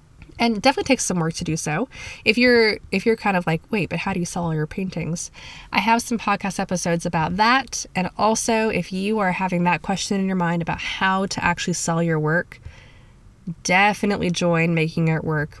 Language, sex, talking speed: English, female, 210 wpm